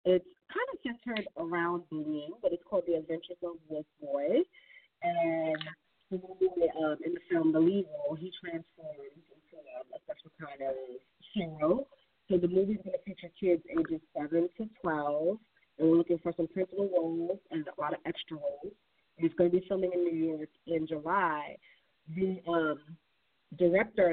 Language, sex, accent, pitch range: English, female, American, 160-195 Hz